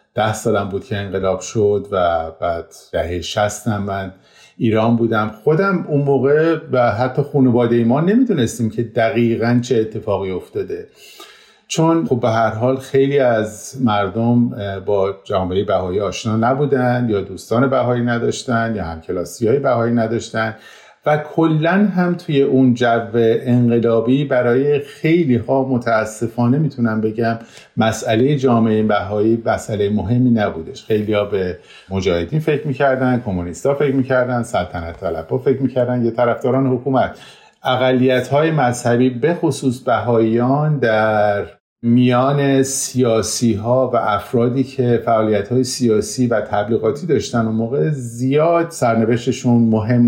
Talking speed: 130 wpm